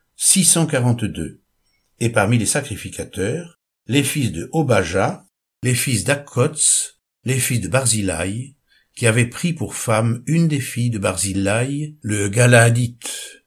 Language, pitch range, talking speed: French, 105-145 Hz, 125 wpm